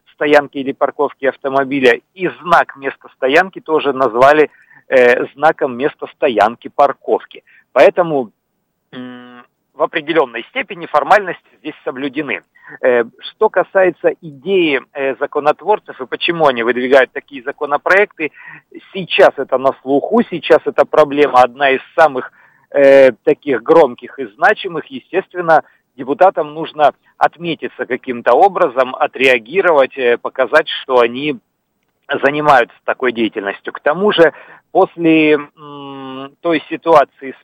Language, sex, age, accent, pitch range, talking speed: Russian, male, 50-69, native, 130-165 Hz, 110 wpm